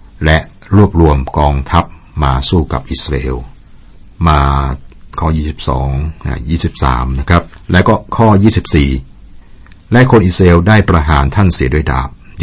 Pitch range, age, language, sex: 65-85 Hz, 60-79, Thai, male